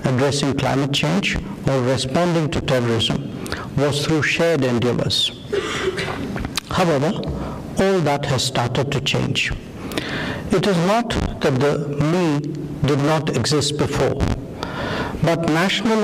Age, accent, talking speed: 60-79, Indian, 110 wpm